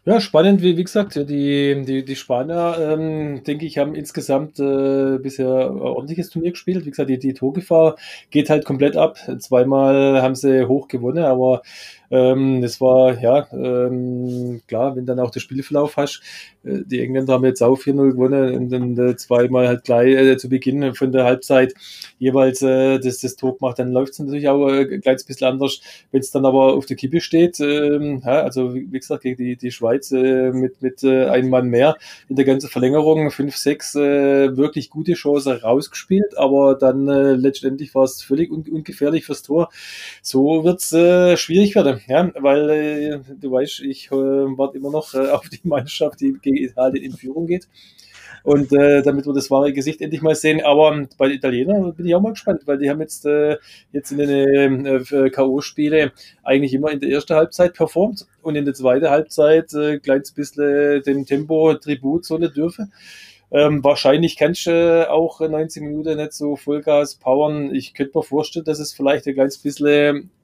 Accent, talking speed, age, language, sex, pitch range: German, 185 wpm, 20-39, German, male, 130-155 Hz